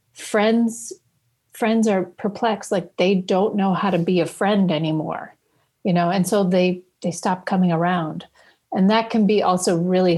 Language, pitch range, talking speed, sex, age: English, 180-225 Hz, 170 wpm, female, 40-59